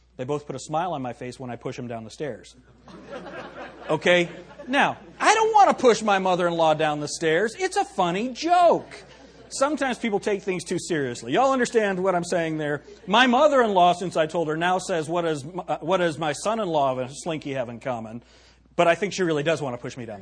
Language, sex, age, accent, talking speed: English, male, 40-59, American, 215 wpm